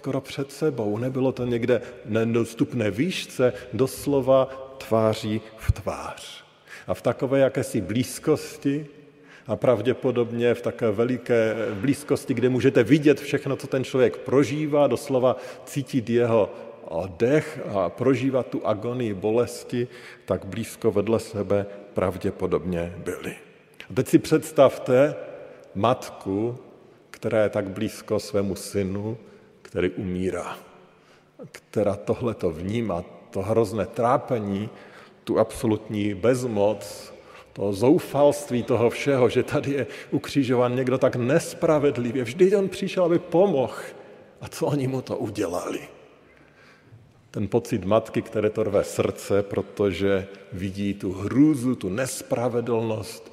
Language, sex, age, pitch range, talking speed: Slovak, male, 50-69, 105-135 Hz, 115 wpm